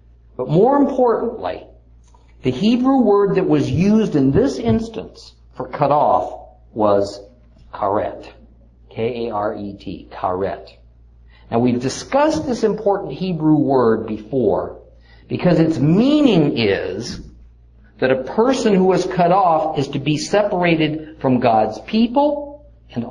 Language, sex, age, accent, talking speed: English, male, 50-69, American, 115 wpm